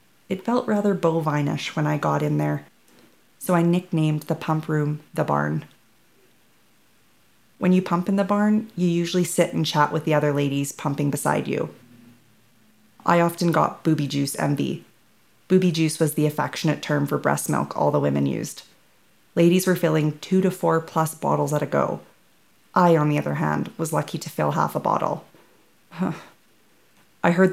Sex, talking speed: female, 175 wpm